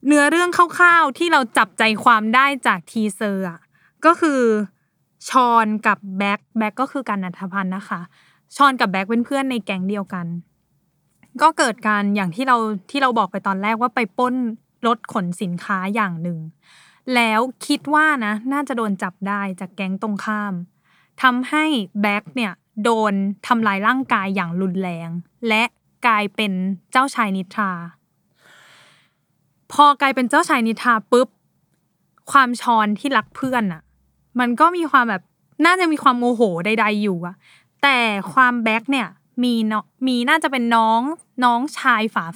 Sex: female